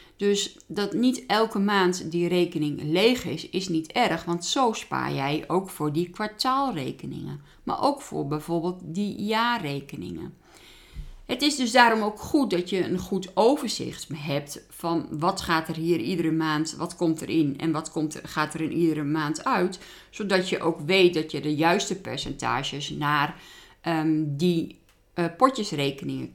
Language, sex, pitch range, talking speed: Dutch, female, 155-200 Hz, 165 wpm